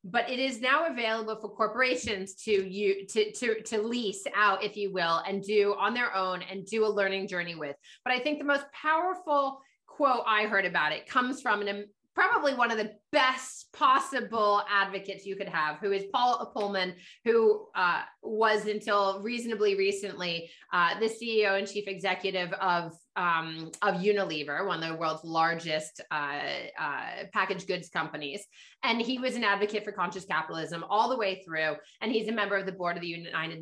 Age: 30-49